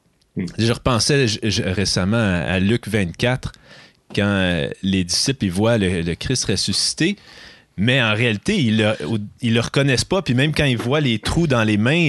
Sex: male